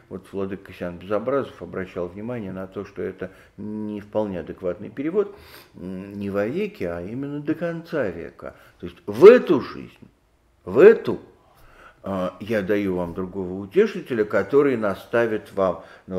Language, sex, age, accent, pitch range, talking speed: Russian, male, 50-69, native, 95-150 Hz, 140 wpm